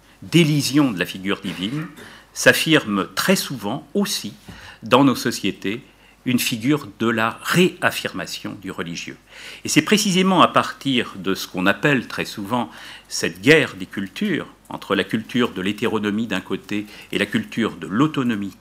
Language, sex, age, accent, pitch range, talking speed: French, male, 50-69, French, 105-150 Hz, 150 wpm